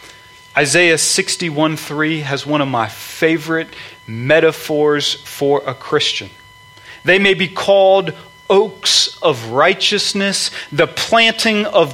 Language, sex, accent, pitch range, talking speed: English, male, American, 150-220 Hz, 115 wpm